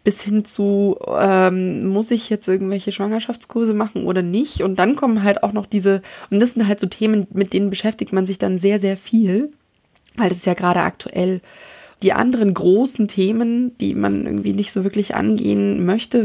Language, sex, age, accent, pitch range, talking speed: German, female, 20-39, German, 180-210 Hz, 190 wpm